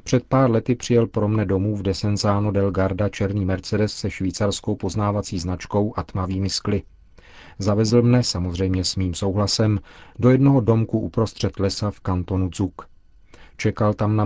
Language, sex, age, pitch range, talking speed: Czech, male, 40-59, 95-110 Hz, 150 wpm